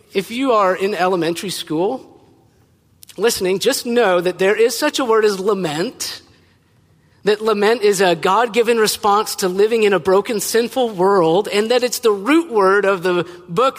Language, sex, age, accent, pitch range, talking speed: English, male, 40-59, American, 115-190 Hz, 170 wpm